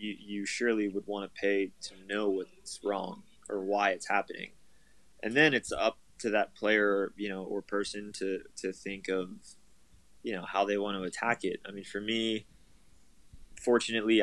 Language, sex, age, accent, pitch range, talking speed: English, male, 20-39, American, 95-105 Hz, 180 wpm